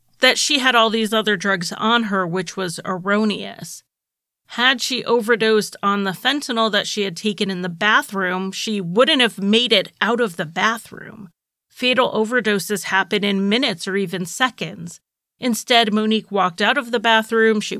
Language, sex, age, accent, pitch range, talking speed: English, female, 30-49, American, 200-240 Hz, 170 wpm